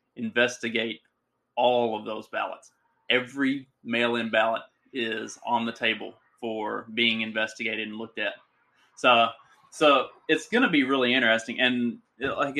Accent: American